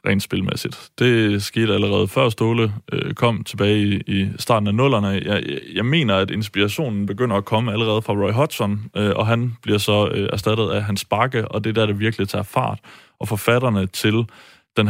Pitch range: 100-120 Hz